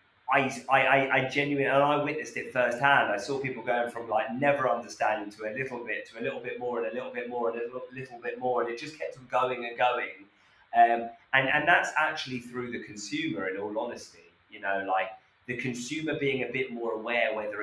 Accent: British